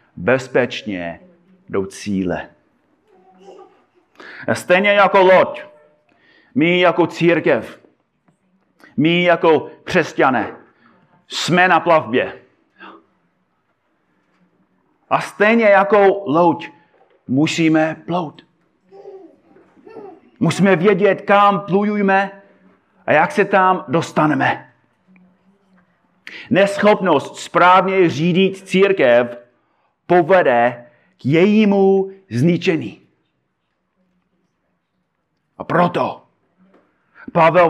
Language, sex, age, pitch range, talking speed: Czech, male, 40-59, 170-205 Hz, 65 wpm